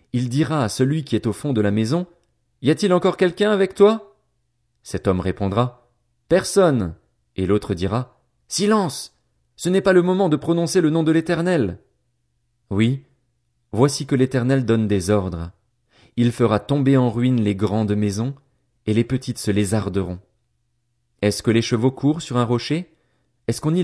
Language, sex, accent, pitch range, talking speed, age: French, male, French, 105-135 Hz, 170 wpm, 30-49